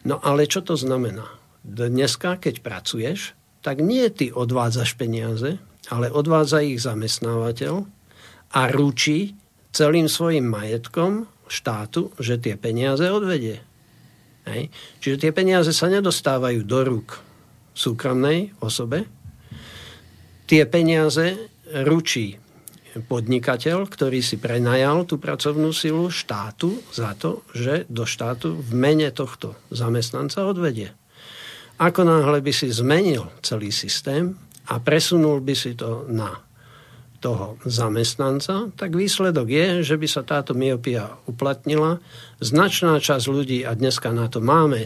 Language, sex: Slovak, male